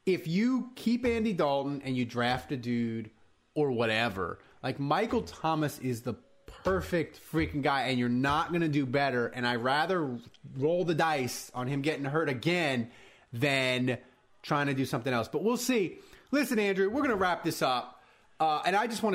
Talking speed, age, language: 190 wpm, 30-49, English